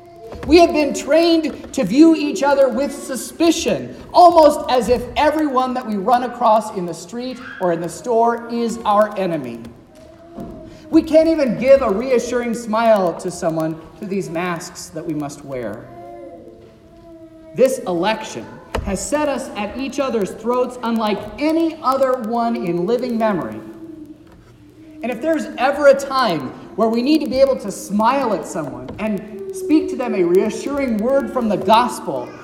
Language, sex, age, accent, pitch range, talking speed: English, male, 40-59, American, 190-280 Hz, 160 wpm